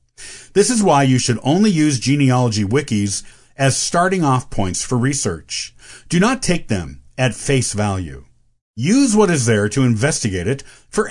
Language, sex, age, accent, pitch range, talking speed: English, male, 50-69, American, 110-155 Hz, 160 wpm